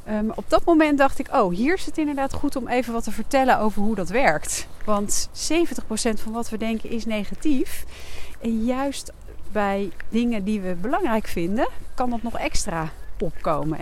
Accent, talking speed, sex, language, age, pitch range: Dutch, 180 wpm, female, Dutch, 40-59, 180-235 Hz